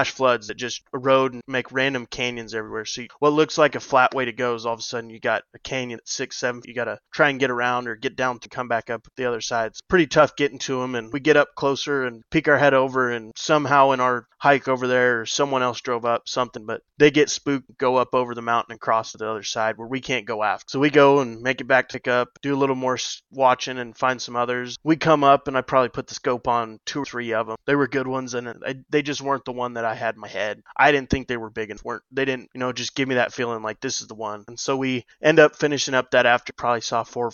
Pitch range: 120-135 Hz